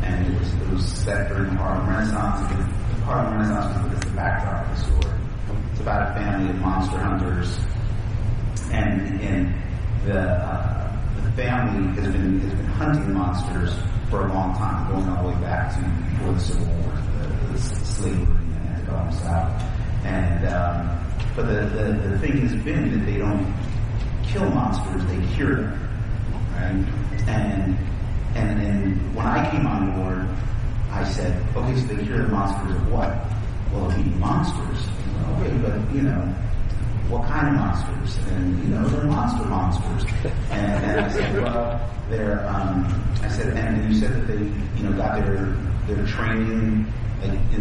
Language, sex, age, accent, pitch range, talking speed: English, male, 30-49, American, 95-110 Hz, 180 wpm